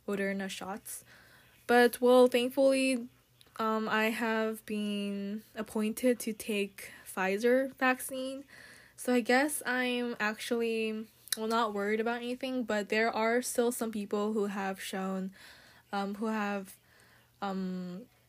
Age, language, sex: 10-29, Korean, female